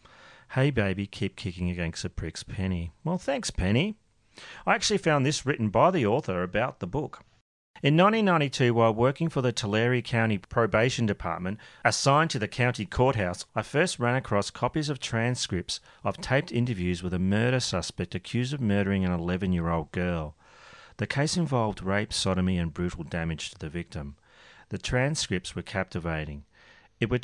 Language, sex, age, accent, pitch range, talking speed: English, male, 40-59, Australian, 90-125 Hz, 165 wpm